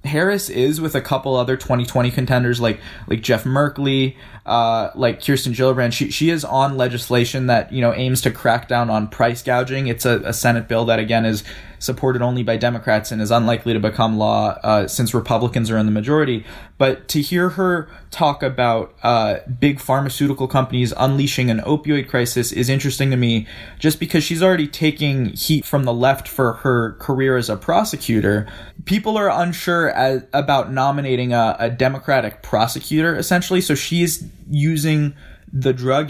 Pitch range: 115-140 Hz